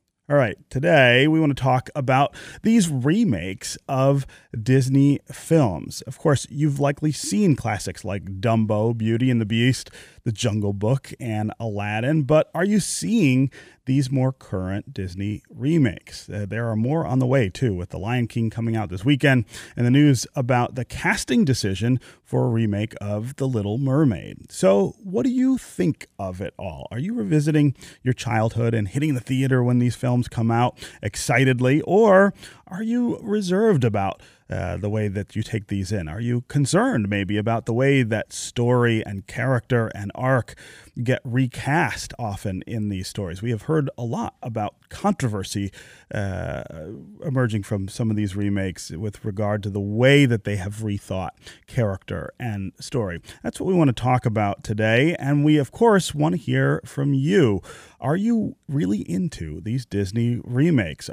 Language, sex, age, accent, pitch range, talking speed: English, male, 30-49, American, 105-140 Hz, 170 wpm